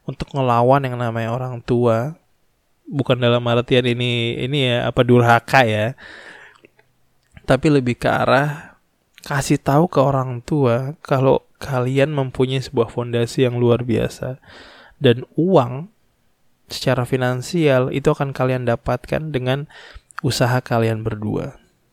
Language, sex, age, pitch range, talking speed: Indonesian, male, 20-39, 120-140 Hz, 120 wpm